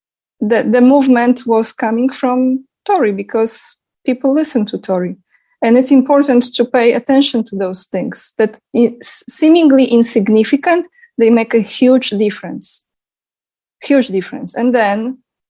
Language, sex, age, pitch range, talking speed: English, female, 20-39, 210-255 Hz, 130 wpm